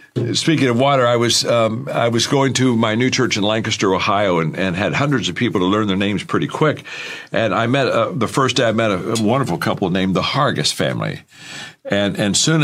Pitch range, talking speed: 110-145 Hz, 225 wpm